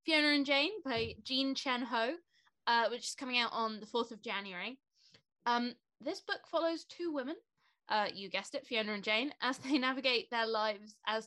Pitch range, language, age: 220-270 Hz, English, 20-39